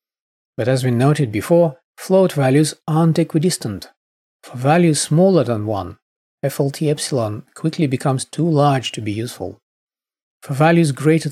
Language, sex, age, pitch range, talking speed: English, male, 40-59, 115-155 Hz, 140 wpm